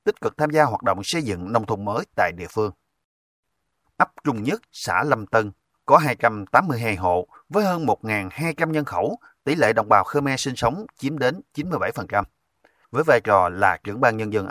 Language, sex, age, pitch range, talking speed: Vietnamese, male, 30-49, 100-145 Hz, 190 wpm